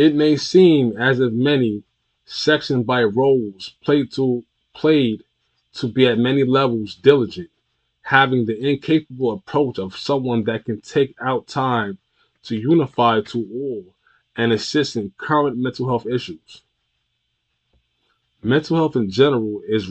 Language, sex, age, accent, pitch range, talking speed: English, male, 20-39, American, 110-140 Hz, 135 wpm